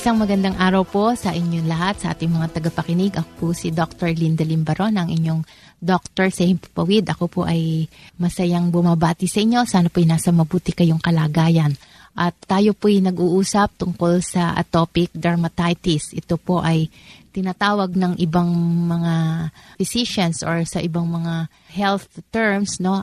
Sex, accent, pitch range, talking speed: female, native, 170-195 Hz, 155 wpm